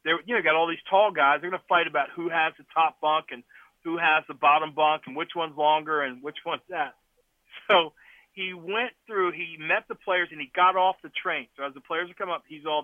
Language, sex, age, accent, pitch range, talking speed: English, male, 40-59, American, 150-190 Hz, 250 wpm